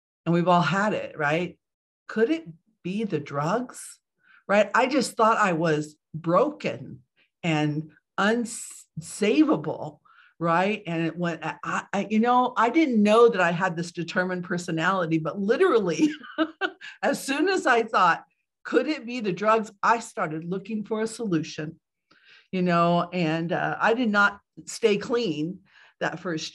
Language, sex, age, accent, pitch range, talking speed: English, female, 50-69, American, 160-210 Hz, 145 wpm